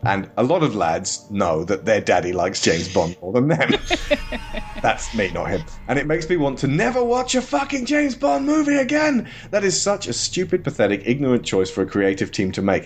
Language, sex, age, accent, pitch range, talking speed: English, male, 30-49, British, 105-145 Hz, 220 wpm